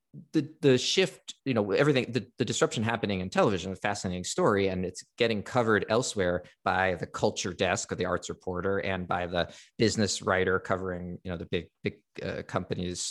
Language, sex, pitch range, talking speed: English, male, 90-110 Hz, 190 wpm